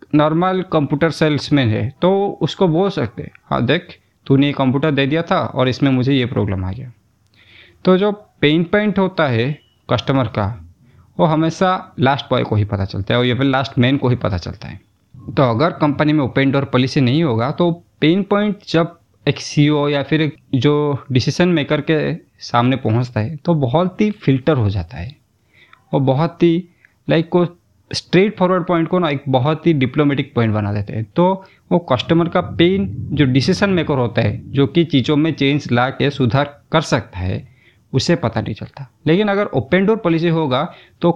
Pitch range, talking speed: 120-165 Hz, 190 wpm